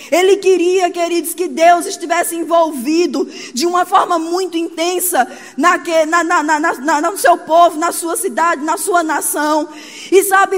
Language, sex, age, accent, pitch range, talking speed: Portuguese, female, 20-39, Brazilian, 305-360 Hz, 170 wpm